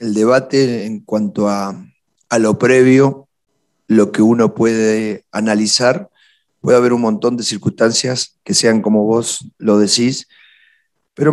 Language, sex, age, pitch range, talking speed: Spanish, male, 40-59, 105-135 Hz, 140 wpm